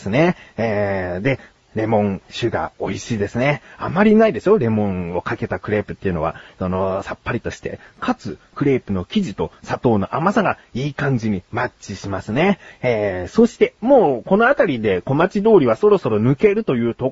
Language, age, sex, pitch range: Japanese, 30-49, male, 105-170 Hz